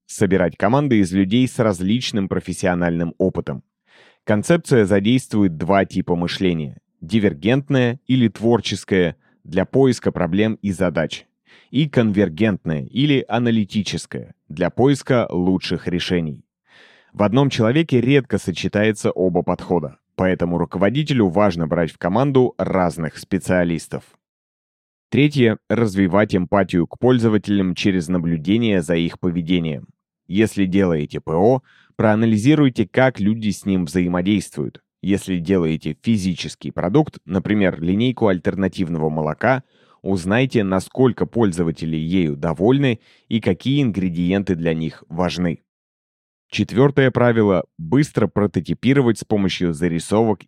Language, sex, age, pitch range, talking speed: Russian, male, 30-49, 90-115 Hz, 105 wpm